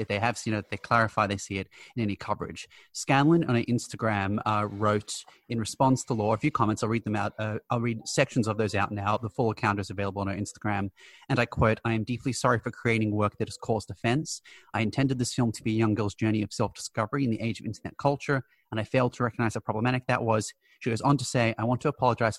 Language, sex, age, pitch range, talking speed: English, male, 30-49, 105-125 Hz, 255 wpm